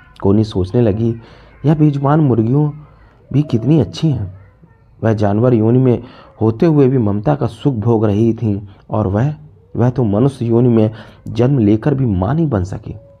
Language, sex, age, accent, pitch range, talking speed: Hindi, male, 30-49, native, 105-125 Hz, 170 wpm